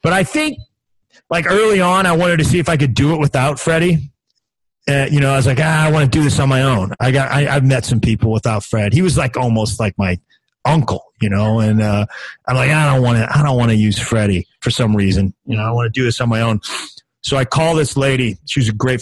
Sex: male